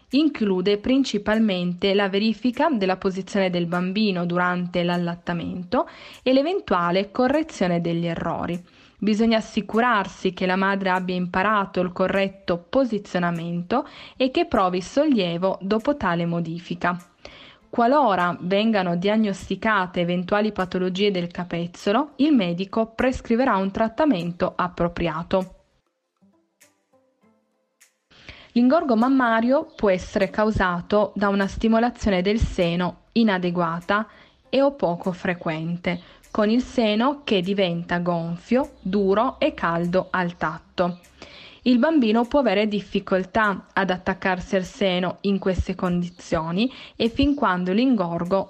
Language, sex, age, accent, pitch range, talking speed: Italian, female, 20-39, native, 180-225 Hz, 110 wpm